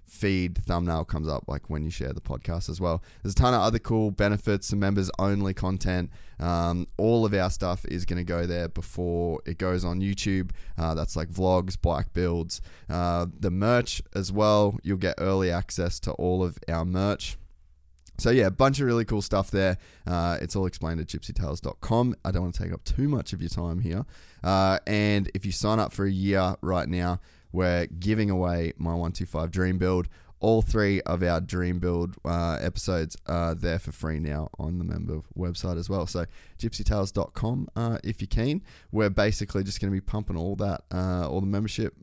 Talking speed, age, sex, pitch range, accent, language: 200 wpm, 20-39, male, 85-100 Hz, Australian, English